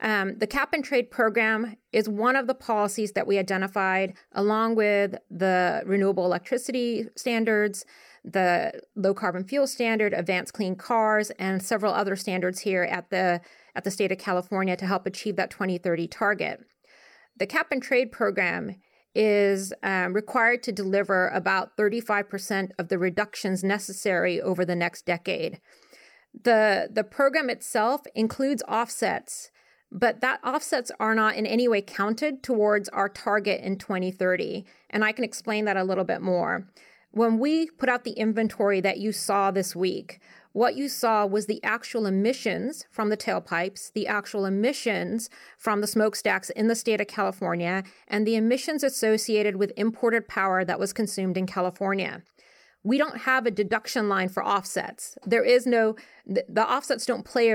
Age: 30-49